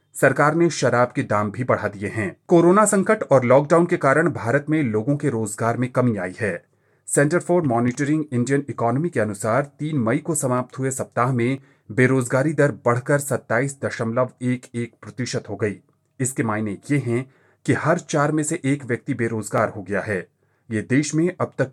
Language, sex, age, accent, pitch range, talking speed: Hindi, male, 30-49, native, 115-155 Hz, 180 wpm